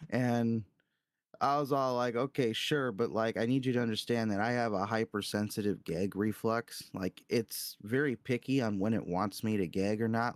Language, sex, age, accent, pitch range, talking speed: English, male, 10-29, American, 110-130 Hz, 195 wpm